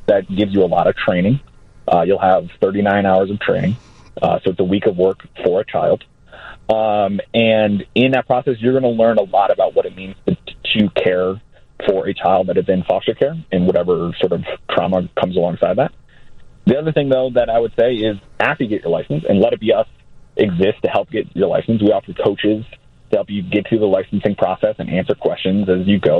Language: English